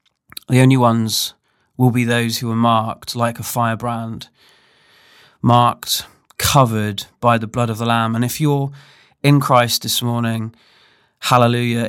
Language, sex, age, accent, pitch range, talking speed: English, male, 30-49, British, 115-130 Hz, 140 wpm